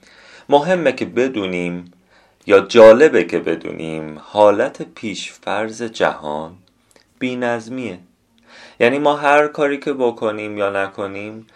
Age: 30-49